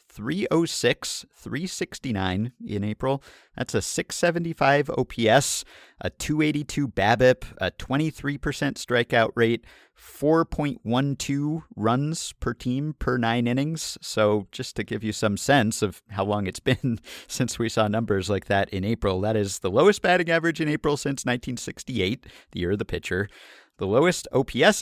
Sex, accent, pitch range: male, American, 100-140 Hz